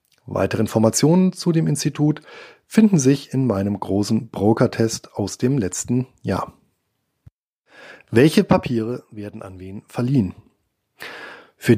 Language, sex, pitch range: German, male, 110-145 Hz